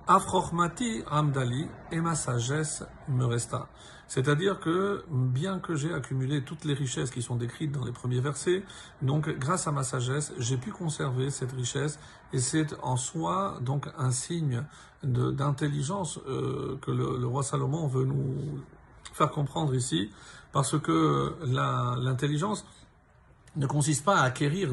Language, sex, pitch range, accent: French, male, 130-160 Hz, French